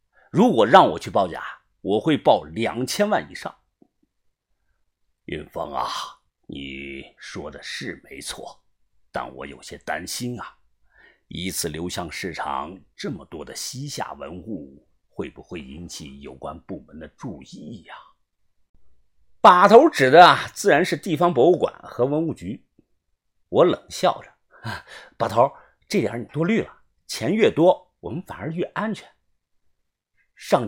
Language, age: Chinese, 50-69